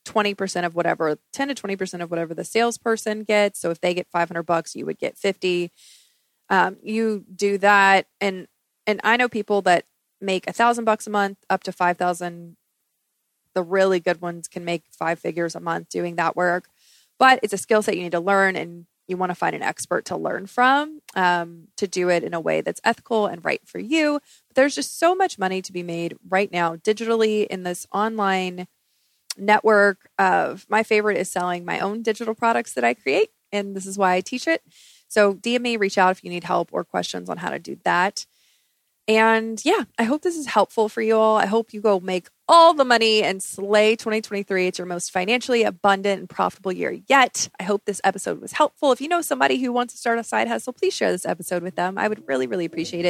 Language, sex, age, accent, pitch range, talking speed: English, female, 20-39, American, 180-230 Hz, 220 wpm